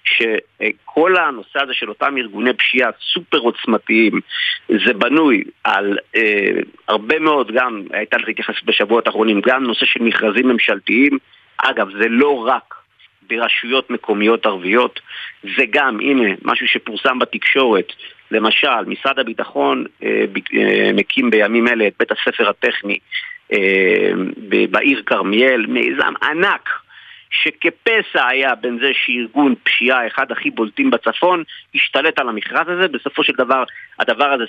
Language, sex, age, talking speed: Hebrew, male, 50-69, 135 wpm